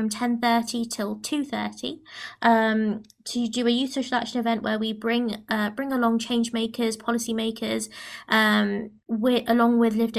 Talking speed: 165 wpm